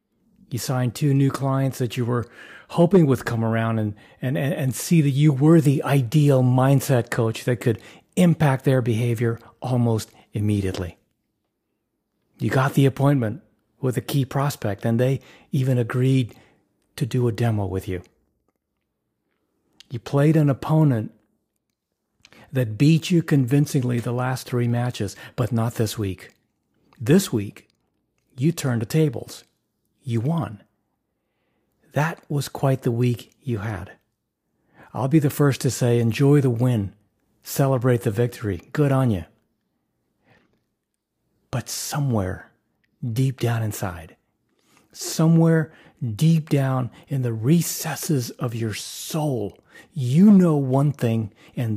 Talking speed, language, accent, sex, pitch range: 130 wpm, English, American, male, 115-140 Hz